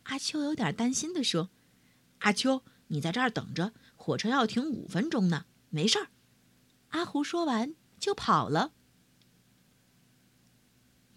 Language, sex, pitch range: Chinese, female, 160-270 Hz